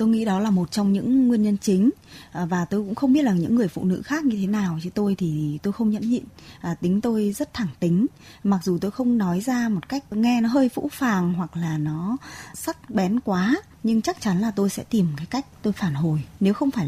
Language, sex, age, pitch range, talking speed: Vietnamese, female, 20-39, 175-235 Hz, 250 wpm